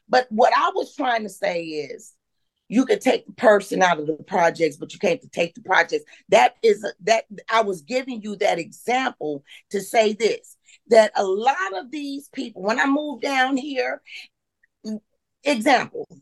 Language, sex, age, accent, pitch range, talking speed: English, female, 40-59, American, 210-305 Hz, 180 wpm